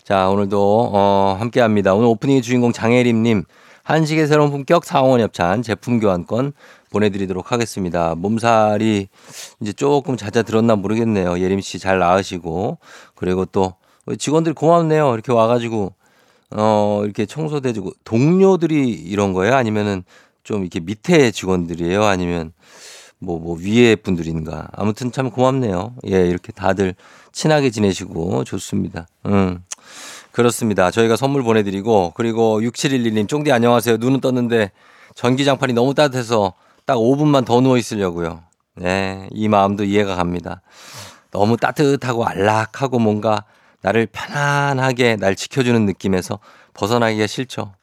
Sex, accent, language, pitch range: male, native, Korean, 95-125 Hz